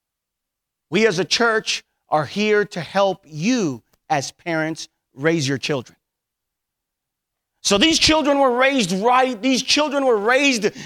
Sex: male